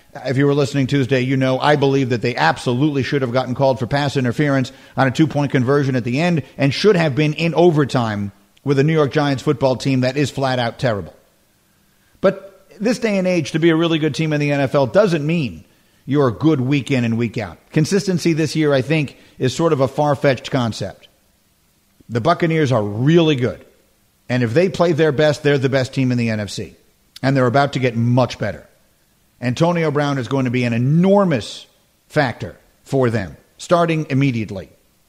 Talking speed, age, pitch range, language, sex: 200 wpm, 50-69, 130-165 Hz, English, male